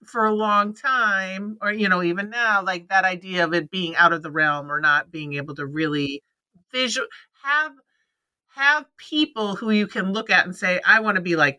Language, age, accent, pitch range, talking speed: English, 50-69, American, 185-245 Hz, 210 wpm